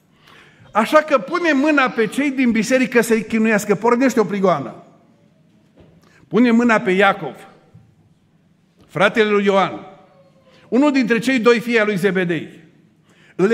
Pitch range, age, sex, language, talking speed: 185-240 Hz, 50-69, male, Romanian, 130 wpm